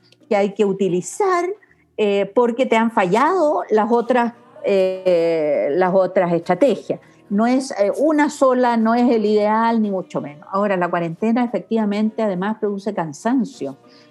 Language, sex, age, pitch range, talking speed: Spanish, female, 50-69, 180-245 Hz, 145 wpm